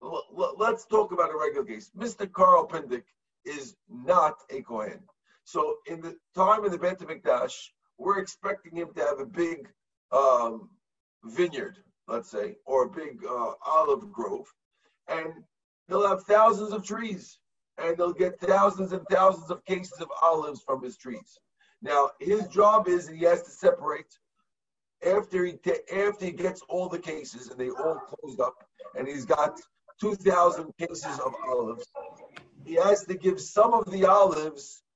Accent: American